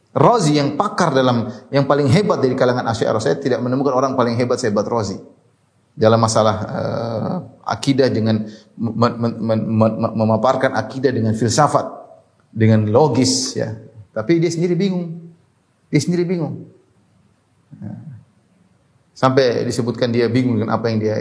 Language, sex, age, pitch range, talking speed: Indonesian, male, 30-49, 115-150 Hz, 140 wpm